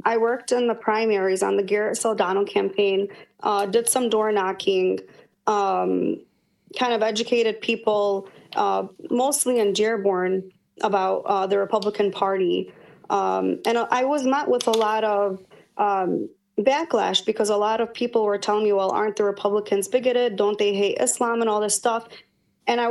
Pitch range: 195-230 Hz